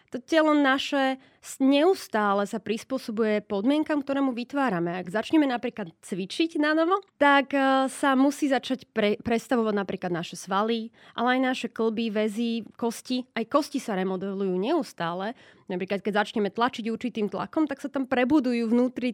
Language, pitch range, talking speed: Slovak, 205-265 Hz, 145 wpm